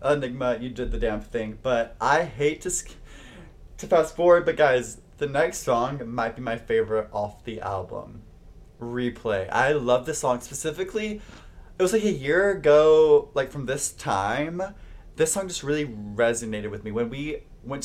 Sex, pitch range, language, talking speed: male, 110-150 Hz, English, 175 wpm